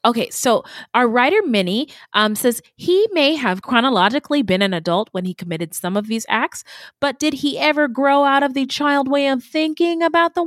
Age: 20-39